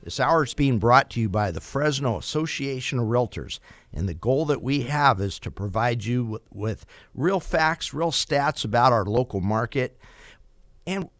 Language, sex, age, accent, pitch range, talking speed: English, male, 50-69, American, 110-140 Hz, 180 wpm